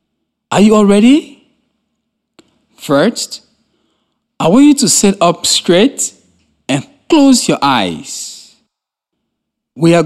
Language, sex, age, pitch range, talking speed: English, male, 60-79, 155-235 Hz, 105 wpm